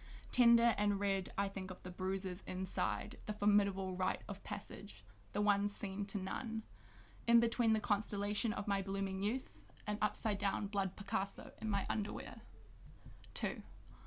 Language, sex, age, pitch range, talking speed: English, female, 20-39, 195-215 Hz, 155 wpm